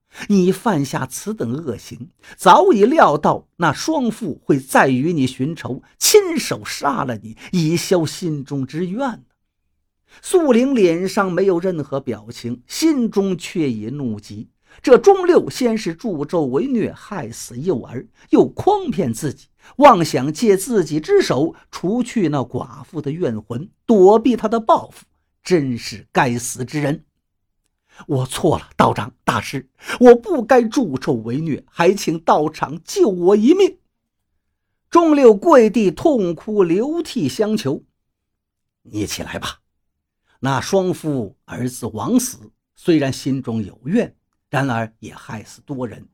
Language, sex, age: Chinese, male, 50-69